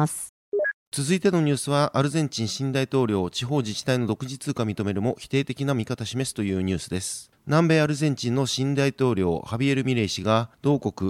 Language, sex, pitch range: Japanese, male, 110-140 Hz